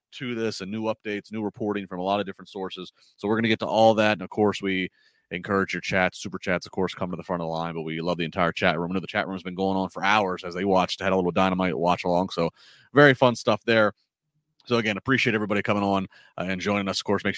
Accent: American